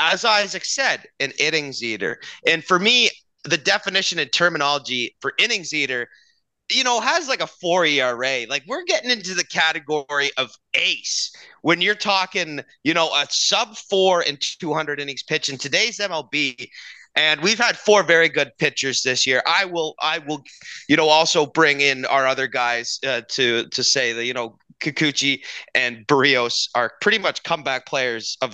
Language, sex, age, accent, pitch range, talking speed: English, male, 30-49, American, 130-175 Hz, 175 wpm